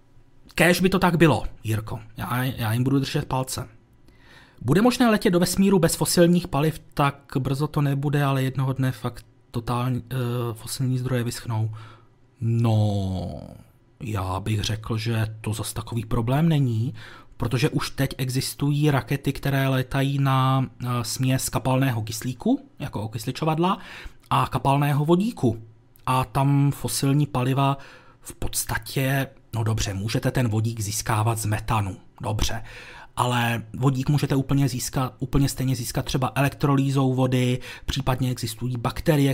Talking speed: 135 wpm